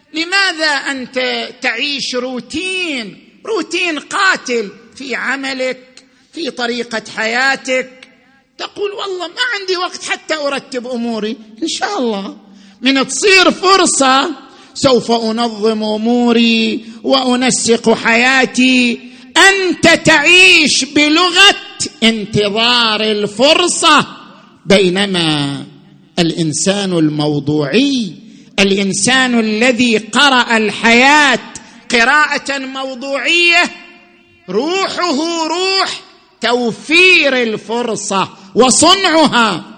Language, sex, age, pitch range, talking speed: Arabic, male, 50-69, 205-280 Hz, 75 wpm